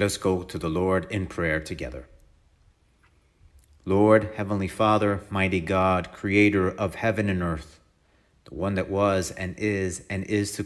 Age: 40-59